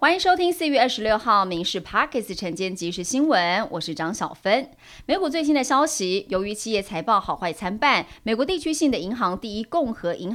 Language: Chinese